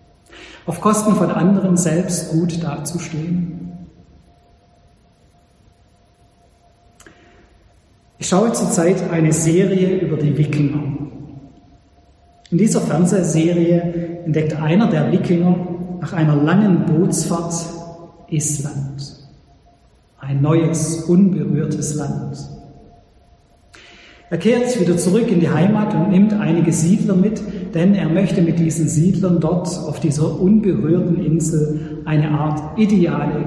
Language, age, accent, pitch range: German, 40-59, German, 145-175 Hz